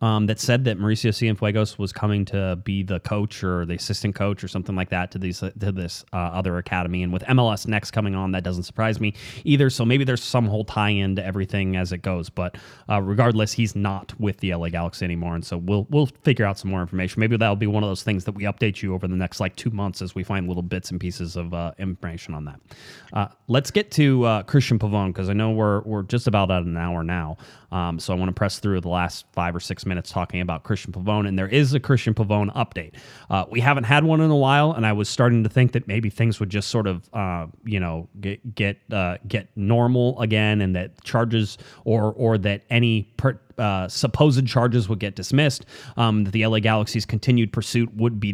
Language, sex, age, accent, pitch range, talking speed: English, male, 30-49, American, 95-120 Hz, 240 wpm